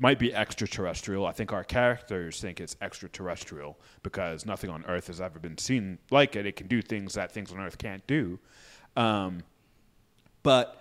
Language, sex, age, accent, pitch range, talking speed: English, male, 30-49, American, 95-125 Hz, 180 wpm